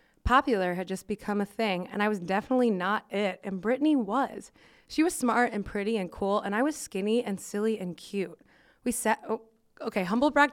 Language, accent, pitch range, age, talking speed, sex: English, American, 200-265 Hz, 20-39, 205 wpm, female